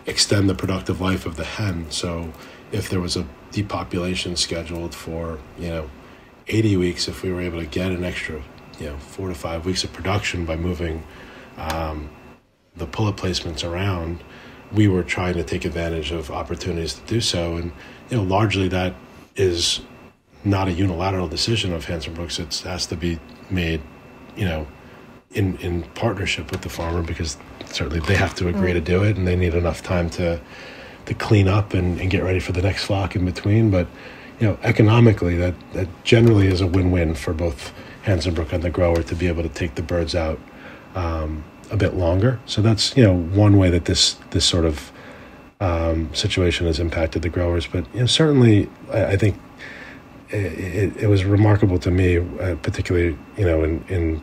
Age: 40-59